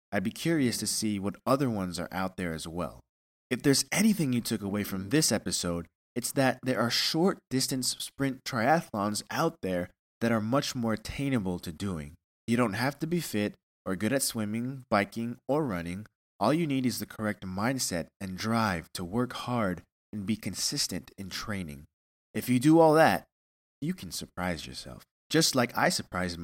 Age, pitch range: 20-39, 90-125 Hz